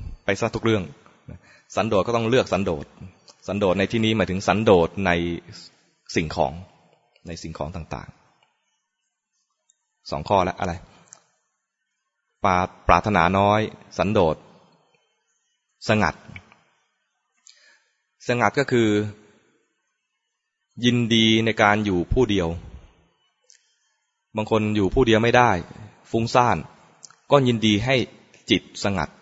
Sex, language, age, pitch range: male, English, 20-39, 95-115 Hz